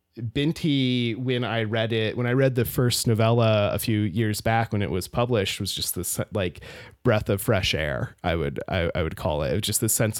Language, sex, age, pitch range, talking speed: English, male, 30-49, 105-135 Hz, 230 wpm